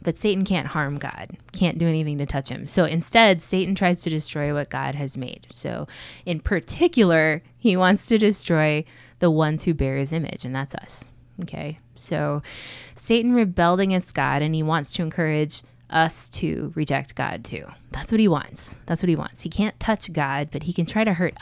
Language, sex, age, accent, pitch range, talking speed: English, female, 20-39, American, 140-175 Hz, 200 wpm